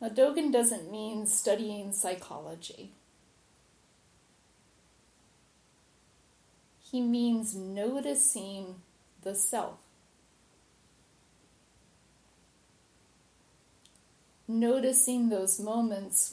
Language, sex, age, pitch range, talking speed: English, female, 30-49, 195-250 Hz, 50 wpm